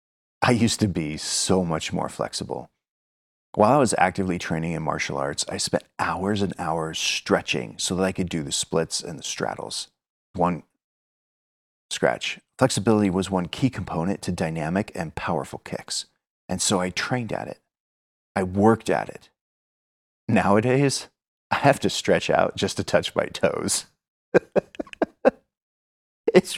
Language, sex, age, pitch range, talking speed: English, male, 30-49, 75-105 Hz, 150 wpm